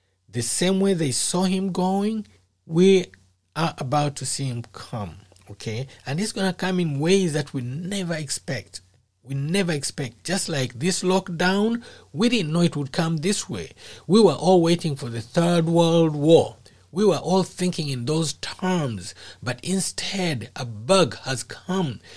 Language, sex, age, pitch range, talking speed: English, male, 60-79, 125-185 Hz, 170 wpm